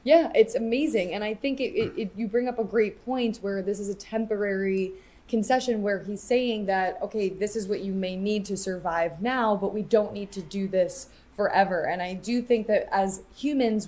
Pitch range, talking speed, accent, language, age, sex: 190-225 Hz, 215 wpm, American, English, 20-39, female